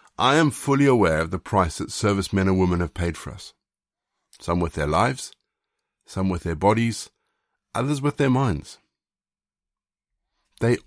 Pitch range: 90-115 Hz